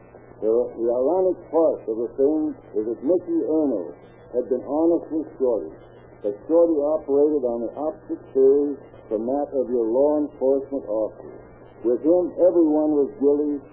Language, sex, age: English, male, 60-79